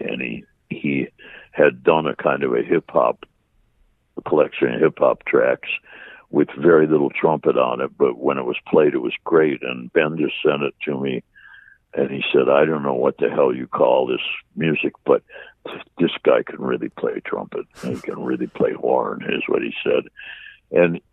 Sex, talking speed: male, 185 wpm